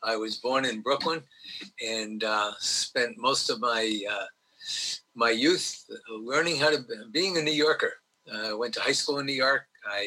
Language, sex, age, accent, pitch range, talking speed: English, male, 50-69, American, 110-160 Hz, 195 wpm